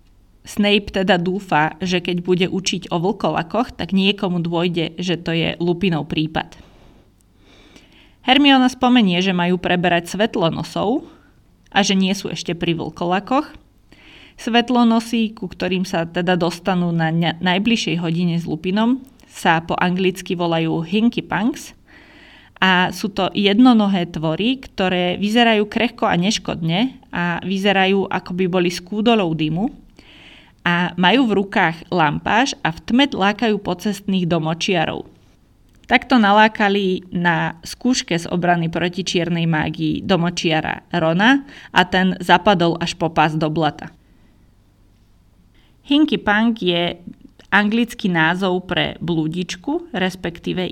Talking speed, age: 120 wpm, 20-39